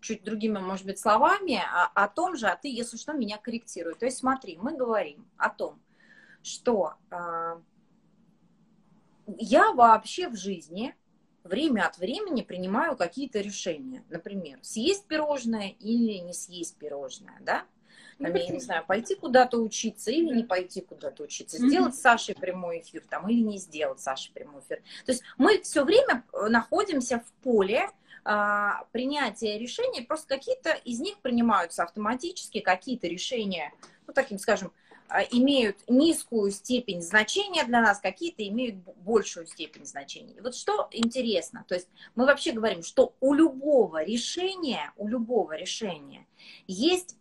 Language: Russian